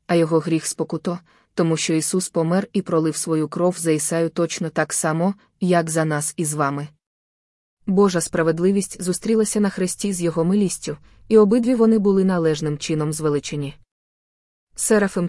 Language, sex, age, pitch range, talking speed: Ukrainian, female, 20-39, 150-180 Hz, 155 wpm